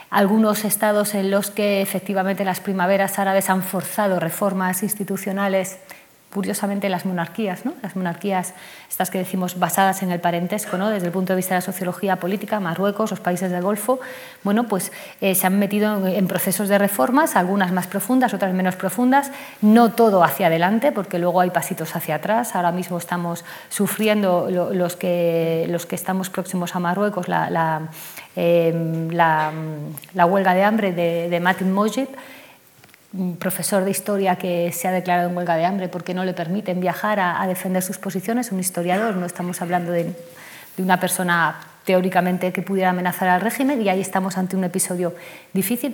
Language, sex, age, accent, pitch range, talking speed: Spanish, female, 30-49, Spanish, 175-200 Hz, 175 wpm